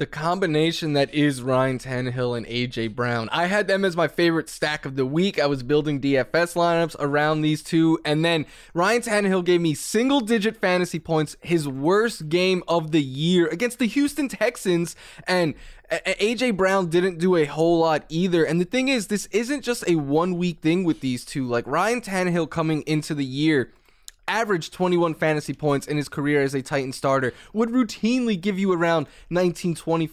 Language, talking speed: English, 185 wpm